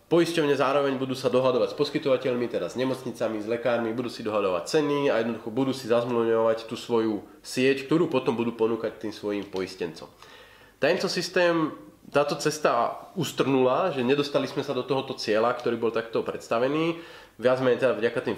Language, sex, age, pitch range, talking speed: Slovak, male, 30-49, 115-140 Hz, 170 wpm